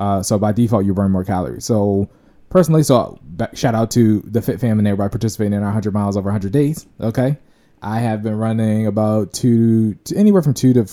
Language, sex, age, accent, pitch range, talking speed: English, male, 20-39, American, 95-115 Hz, 215 wpm